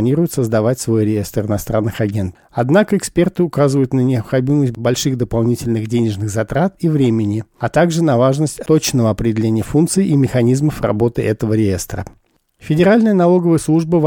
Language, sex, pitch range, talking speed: Russian, male, 115-150 Hz, 140 wpm